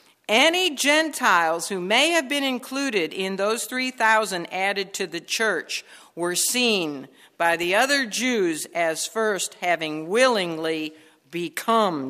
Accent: American